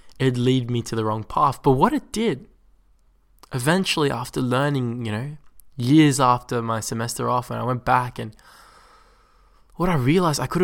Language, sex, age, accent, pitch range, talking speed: English, male, 20-39, Australian, 115-145 Hz, 175 wpm